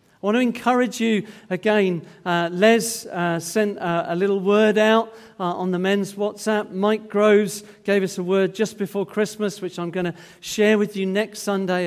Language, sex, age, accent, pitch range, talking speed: English, male, 40-59, British, 175-215 Hz, 190 wpm